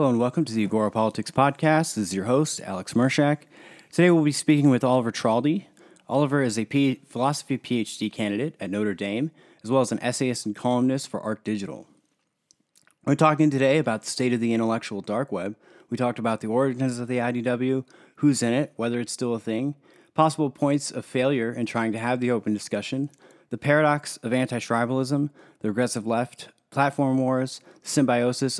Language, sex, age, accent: English, male, 30-49, American